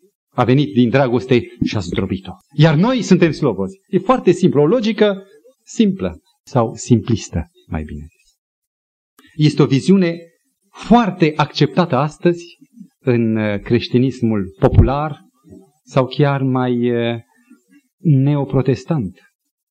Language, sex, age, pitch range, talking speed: Romanian, male, 40-59, 130-205 Hz, 105 wpm